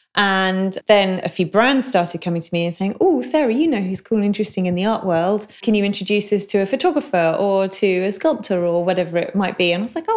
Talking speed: 255 wpm